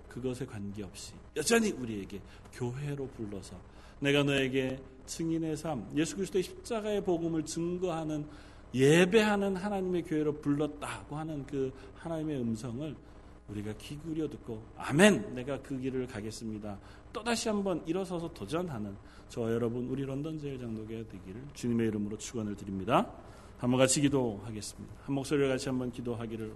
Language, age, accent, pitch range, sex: Korean, 40-59, native, 110-155 Hz, male